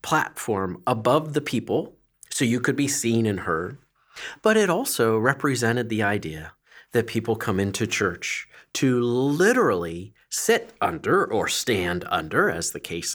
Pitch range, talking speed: 105-140 Hz, 145 wpm